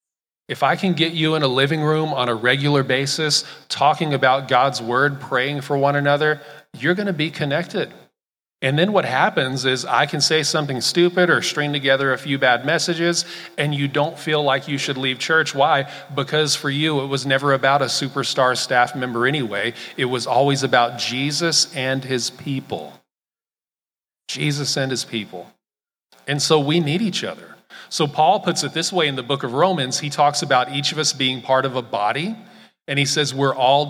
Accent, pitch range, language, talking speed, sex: American, 130-155 Hz, English, 195 wpm, male